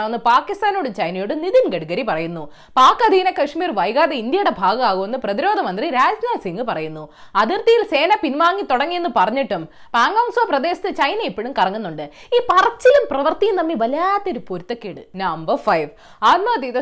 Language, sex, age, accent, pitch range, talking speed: Malayalam, female, 20-39, native, 220-365 Hz, 90 wpm